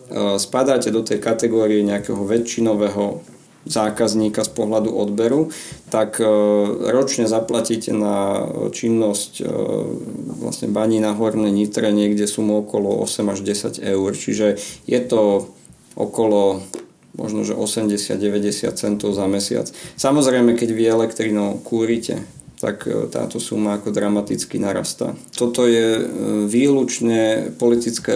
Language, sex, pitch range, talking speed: Slovak, male, 105-115 Hz, 110 wpm